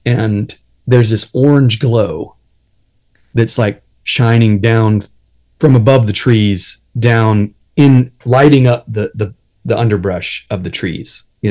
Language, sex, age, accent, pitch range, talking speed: English, male, 30-49, American, 105-130 Hz, 130 wpm